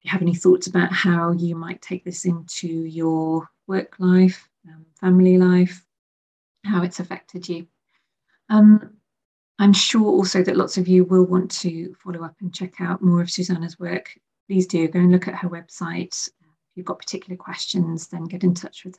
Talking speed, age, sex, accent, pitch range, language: 185 wpm, 30-49, female, British, 175-200 Hz, English